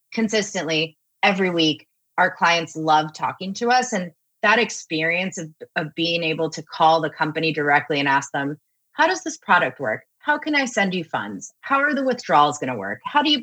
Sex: female